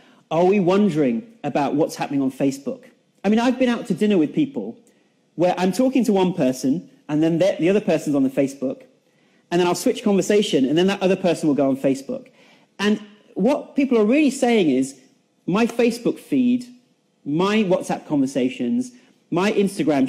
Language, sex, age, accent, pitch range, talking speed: English, male, 30-49, British, 170-250 Hz, 180 wpm